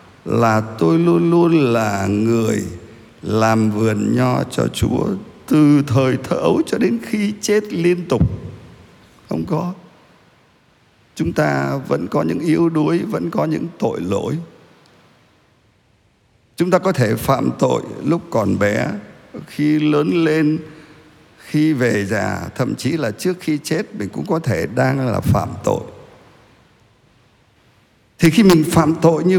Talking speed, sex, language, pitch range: 140 wpm, male, Vietnamese, 110-160 Hz